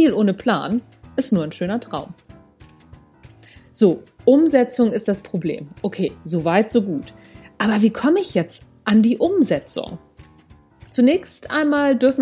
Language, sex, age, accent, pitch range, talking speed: German, female, 40-59, German, 190-245 Hz, 140 wpm